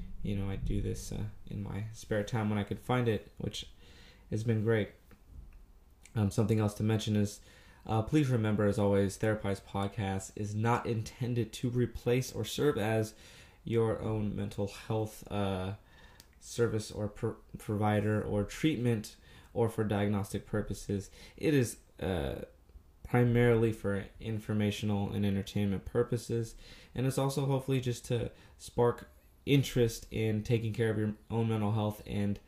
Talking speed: 150 wpm